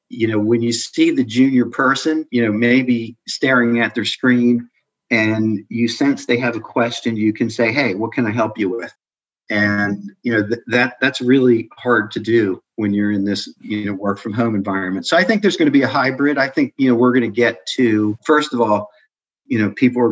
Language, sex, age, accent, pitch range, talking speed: English, male, 40-59, American, 105-120 Hz, 230 wpm